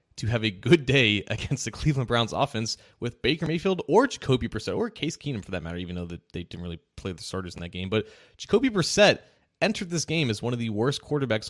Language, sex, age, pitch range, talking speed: English, male, 20-39, 100-125 Hz, 235 wpm